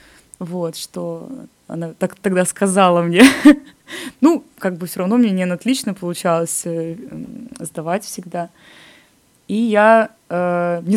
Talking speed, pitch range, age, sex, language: 130 wpm, 175-210 Hz, 20-39, female, Russian